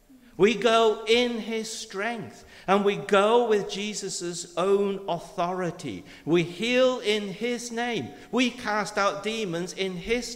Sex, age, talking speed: male, 50-69, 135 wpm